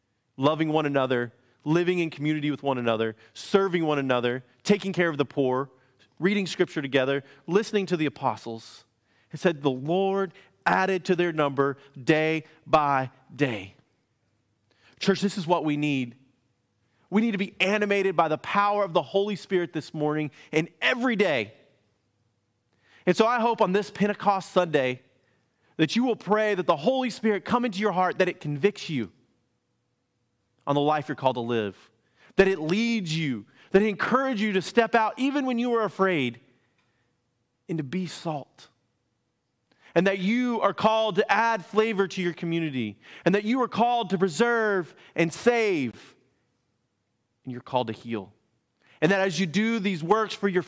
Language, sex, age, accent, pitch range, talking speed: English, male, 30-49, American, 125-200 Hz, 170 wpm